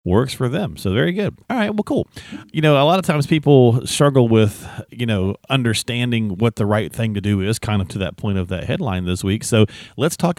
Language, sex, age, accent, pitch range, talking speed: English, male, 40-59, American, 100-135 Hz, 245 wpm